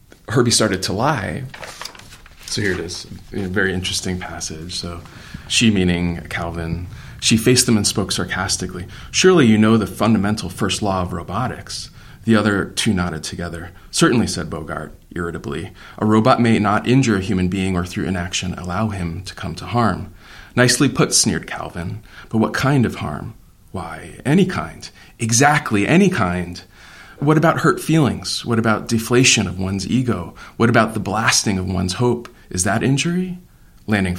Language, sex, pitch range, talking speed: English, male, 95-125 Hz, 165 wpm